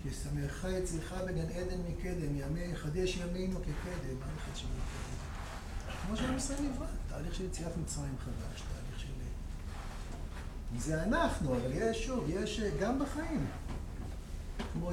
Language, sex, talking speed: Hebrew, male, 130 wpm